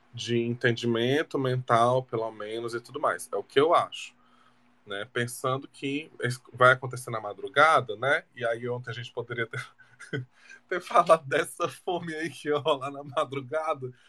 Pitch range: 120-180 Hz